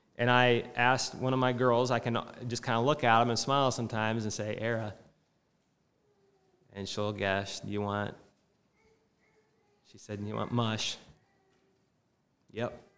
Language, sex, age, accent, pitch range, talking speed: English, male, 20-39, American, 115-160 Hz, 155 wpm